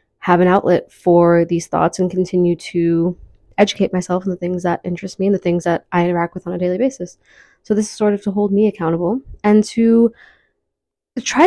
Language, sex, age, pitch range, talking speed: English, female, 20-39, 175-205 Hz, 210 wpm